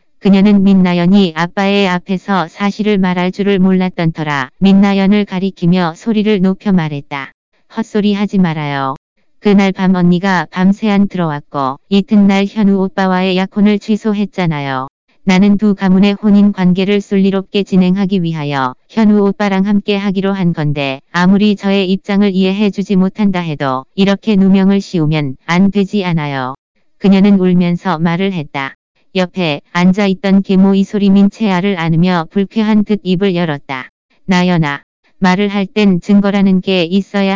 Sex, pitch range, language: female, 175-200 Hz, Korean